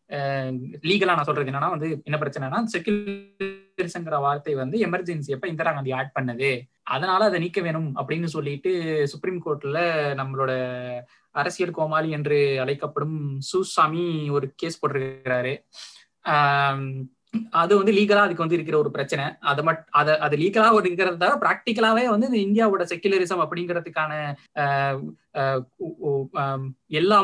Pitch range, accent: 140-185 Hz, native